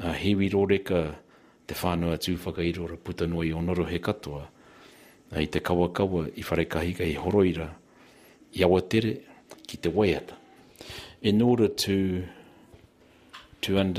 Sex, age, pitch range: male, 60-79, 85-95 Hz